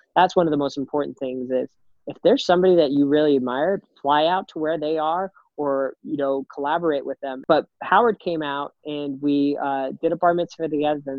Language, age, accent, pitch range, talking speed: English, 20-39, American, 135-155 Hz, 210 wpm